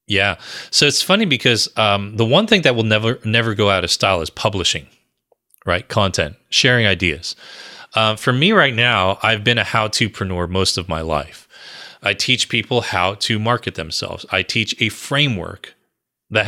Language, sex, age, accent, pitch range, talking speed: English, male, 30-49, American, 100-125 Hz, 180 wpm